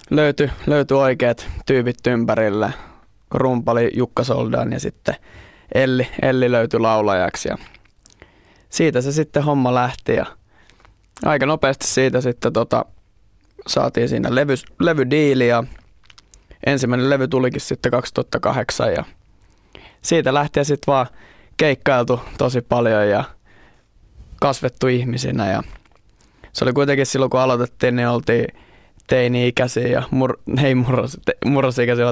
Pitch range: 115-130 Hz